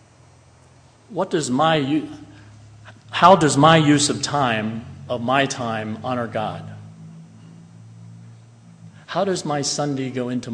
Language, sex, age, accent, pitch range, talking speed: English, male, 50-69, American, 115-140 Hz, 120 wpm